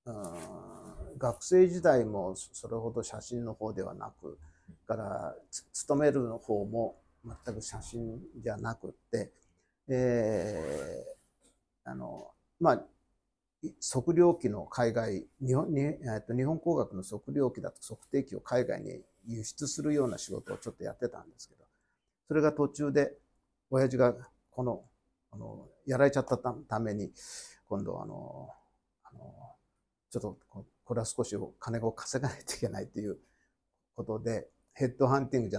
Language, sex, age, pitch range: Japanese, male, 50-69, 105-145 Hz